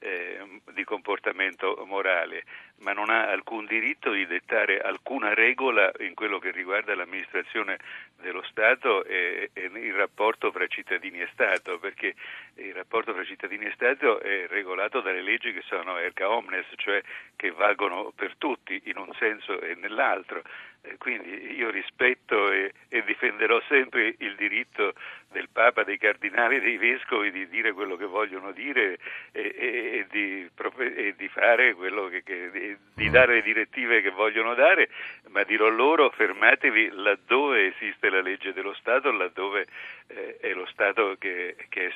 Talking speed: 145 wpm